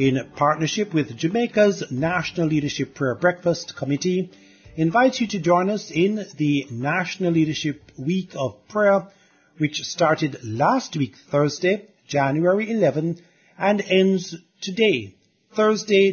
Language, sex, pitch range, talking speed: English, male, 140-195 Hz, 120 wpm